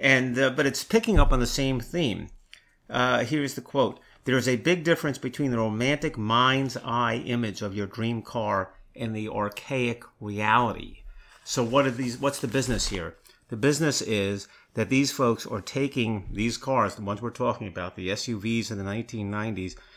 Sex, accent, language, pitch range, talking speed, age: male, American, English, 110-135 Hz, 170 wpm, 50-69